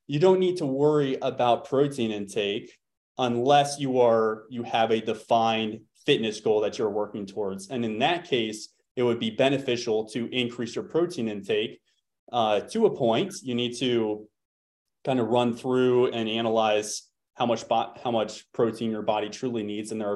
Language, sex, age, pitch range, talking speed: English, male, 20-39, 110-130 Hz, 175 wpm